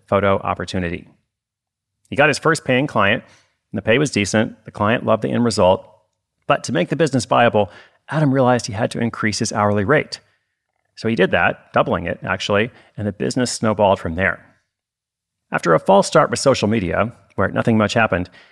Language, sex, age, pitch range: English, male, 30-49, 105-130 Hz